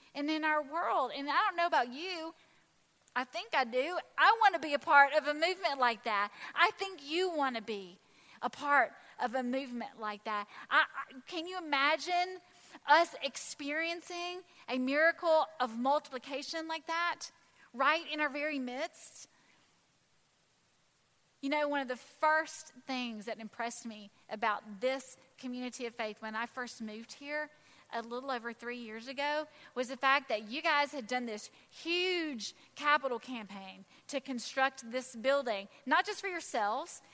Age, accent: 30-49, American